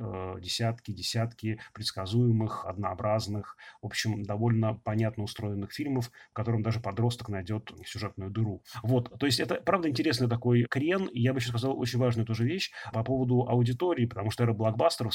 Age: 30-49